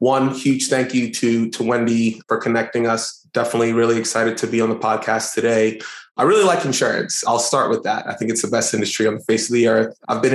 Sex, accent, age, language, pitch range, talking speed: male, American, 20-39, English, 110-120 Hz, 240 wpm